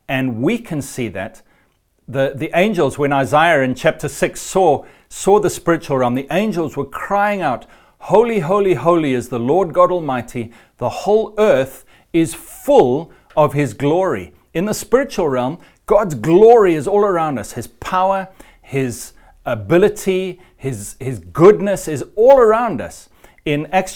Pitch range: 130-190 Hz